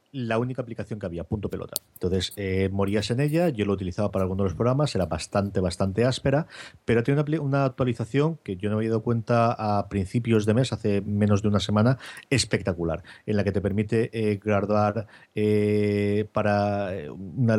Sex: male